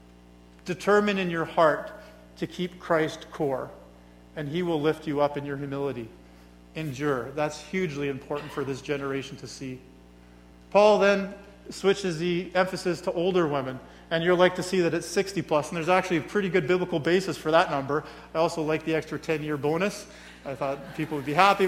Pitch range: 140-180 Hz